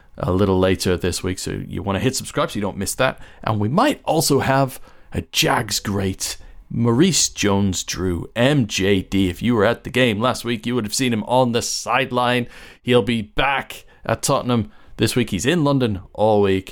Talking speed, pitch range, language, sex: 195 wpm, 100-140 Hz, English, male